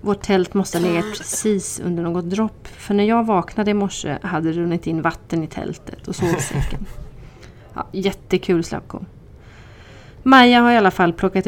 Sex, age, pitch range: female, 30-49, 185-225 Hz